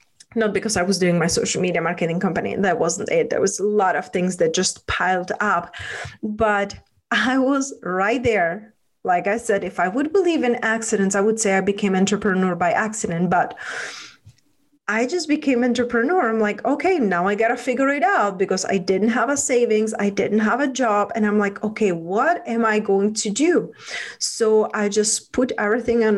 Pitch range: 195-240 Hz